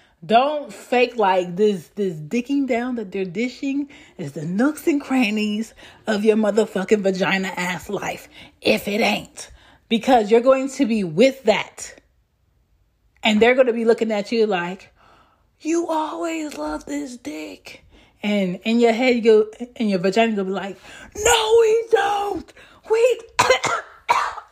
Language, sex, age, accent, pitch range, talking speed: English, female, 30-49, American, 215-345 Hz, 145 wpm